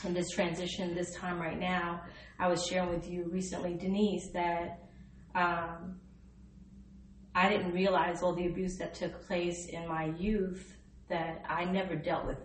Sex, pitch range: female, 165-190 Hz